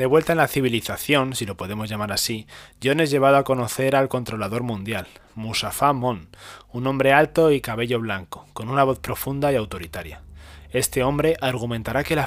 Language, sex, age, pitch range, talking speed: Spanish, male, 20-39, 105-135 Hz, 180 wpm